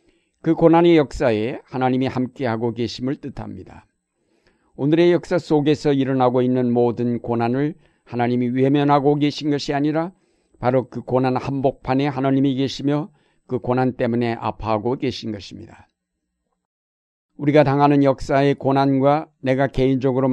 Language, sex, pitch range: Korean, male, 120-145 Hz